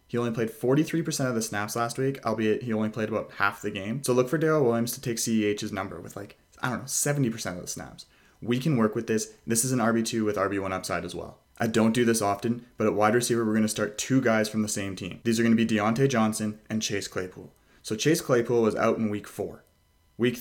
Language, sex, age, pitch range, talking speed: English, male, 20-39, 105-125 Hz, 255 wpm